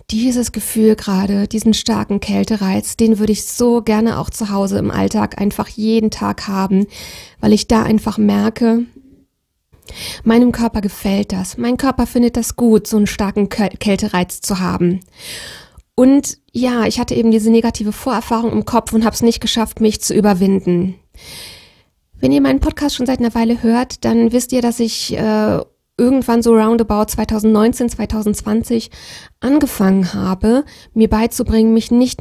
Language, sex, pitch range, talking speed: German, female, 200-235 Hz, 155 wpm